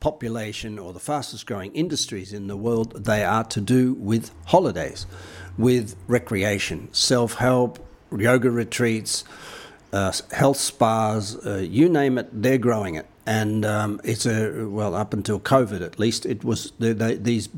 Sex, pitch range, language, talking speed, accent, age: male, 105-125 Hz, English, 145 wpm, Australian, 60-79